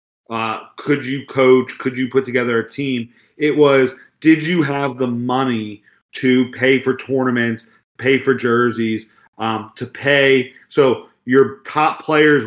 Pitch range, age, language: 125-150 Hz, 40-59, English